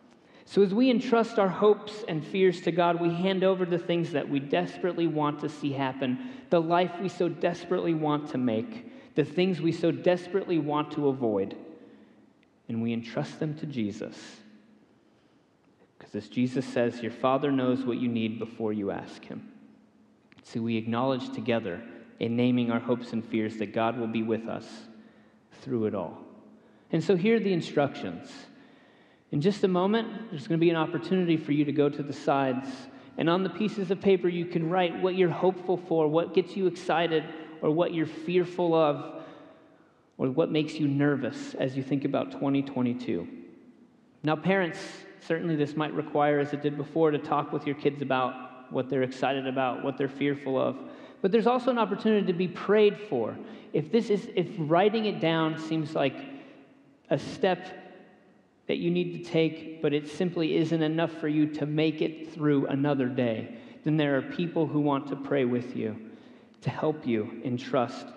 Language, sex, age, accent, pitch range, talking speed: English, male, 30-49, American, 135-185 Hz, 185 wpm